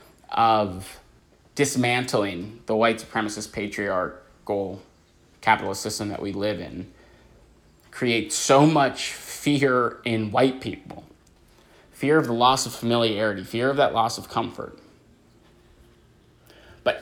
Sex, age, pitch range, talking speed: male, 20-39, 100-120 Hz, 115 wpm